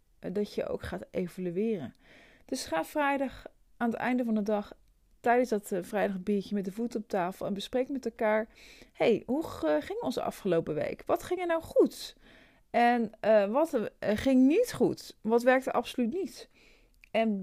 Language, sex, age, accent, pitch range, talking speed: Dutch, female, 40-59, Dutch, 205-260 Hz, 170 wpm